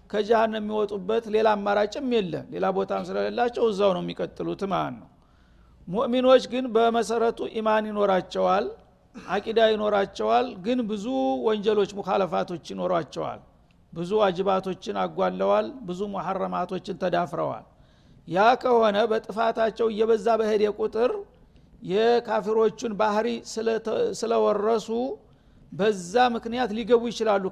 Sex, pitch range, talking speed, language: male, 205-235 Hz, 95 wpm, Amharic